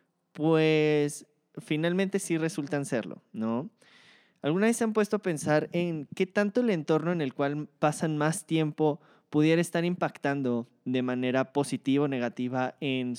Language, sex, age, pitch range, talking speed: Spanish, male, 20-39, 130-170 Hz, 150 wpm